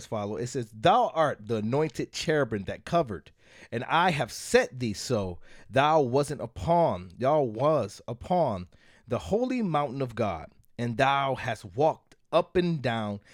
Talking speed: 155 wpm